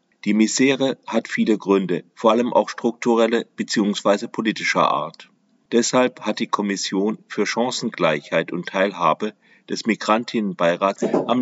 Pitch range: 95-115 Hz